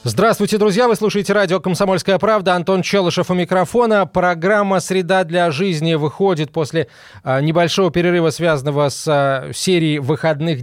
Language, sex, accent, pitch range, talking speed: Russian, male, native, 150-190 Hz, 130 wpm